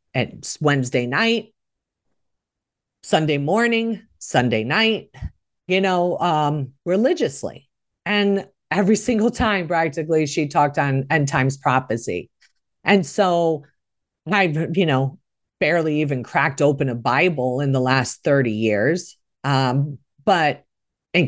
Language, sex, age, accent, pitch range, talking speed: English, female, 40-59, American, 140-230 Hz, 115 wpm